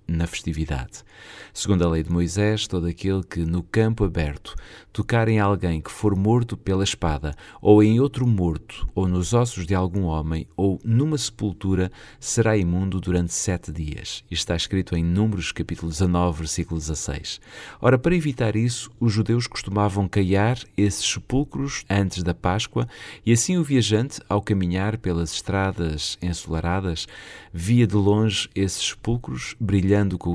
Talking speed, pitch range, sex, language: 150 wpm, 85-110 Hz, male, Portuguese